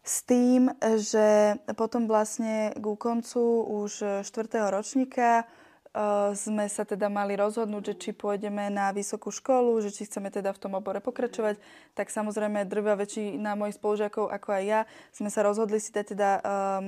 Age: 20-39